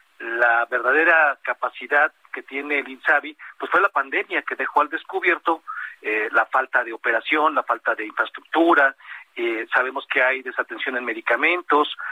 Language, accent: Spanish, Mexican